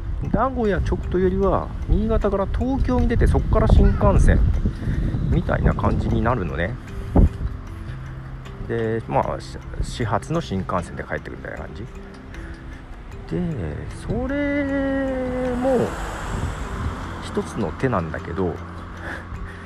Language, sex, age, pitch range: Japanese, male, 50-69, 80-120 Hz